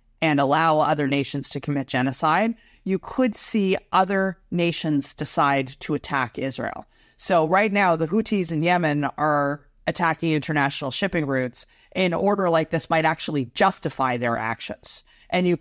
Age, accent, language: 30-49, American, English